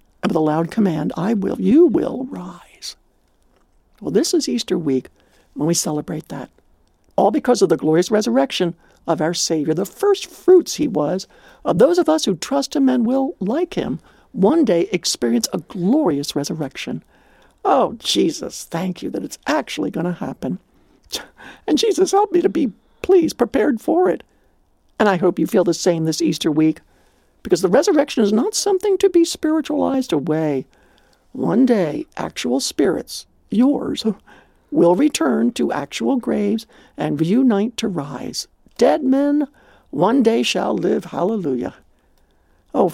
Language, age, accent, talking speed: English, 60-79, American, 155 wpm